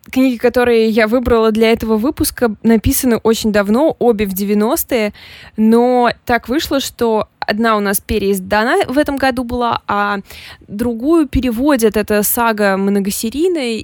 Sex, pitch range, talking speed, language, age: female, 210-240 Hz, 135 wpm, Russian, 20-39